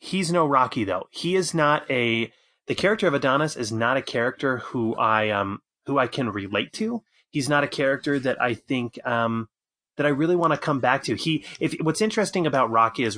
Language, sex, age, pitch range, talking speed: English, male, 30-49, 115-150 Hz, 215 wpm